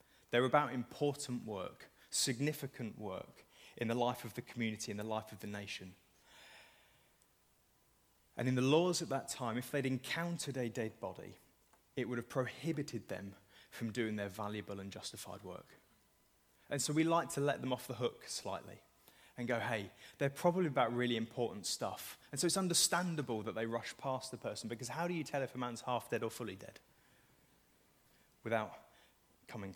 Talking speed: 180 wpm